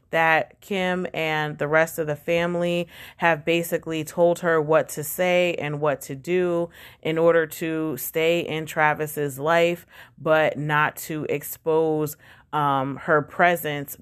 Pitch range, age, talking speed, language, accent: 150-170 Hz, 30-49, 140 wpm, English, American